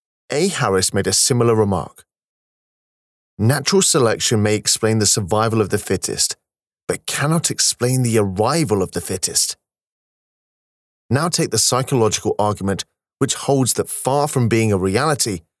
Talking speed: 140 wpm